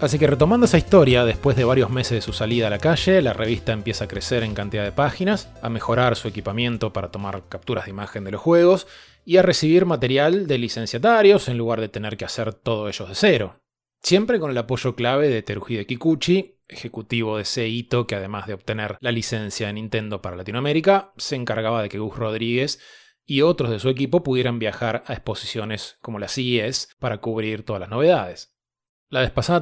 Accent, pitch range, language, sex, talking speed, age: Argentinian, 110-140 Hz, Spanish, male, 200 wpm, 20-39